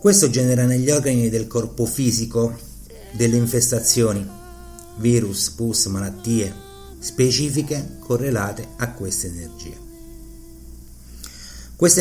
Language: Italian